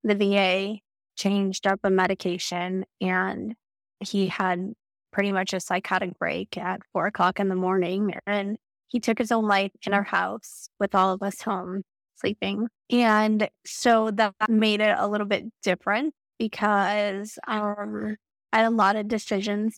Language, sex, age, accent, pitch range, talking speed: English, female, 20-39, American, 195-225 Hz, 160 wpm